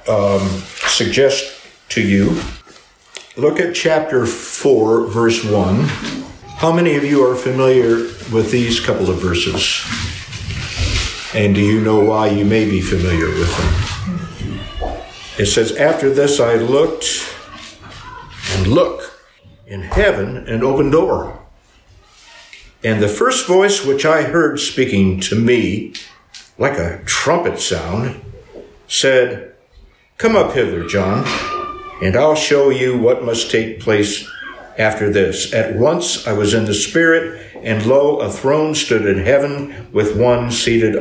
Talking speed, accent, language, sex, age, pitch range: 135 wpm, American, English, male, 60-79, 100-130 Hz